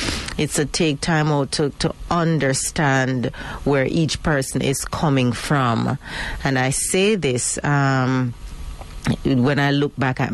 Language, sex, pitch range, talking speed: English, female, 125-150 Hz, 140 wpm